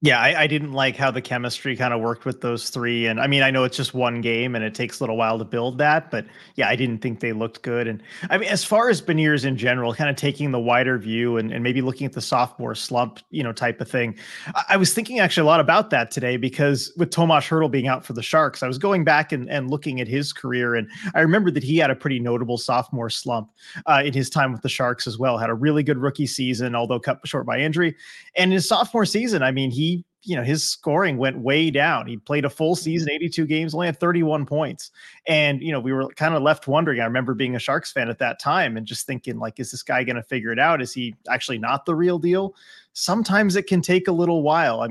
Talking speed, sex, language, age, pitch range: 265 wpm, male, English, 30-49, 125-160 Hz